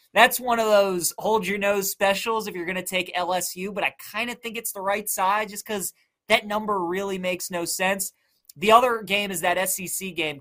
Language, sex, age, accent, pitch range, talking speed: English, male, 20-39, American, 170-200 Hz, 210 wpm